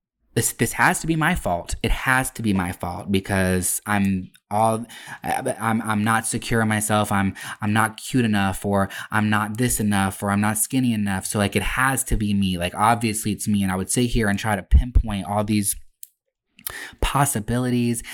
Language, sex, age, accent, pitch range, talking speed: English, male, 20-39, American, 100-120 Hz, 200 wpm